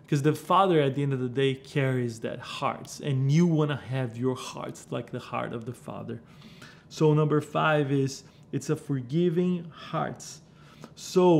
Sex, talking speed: male, 180 wpm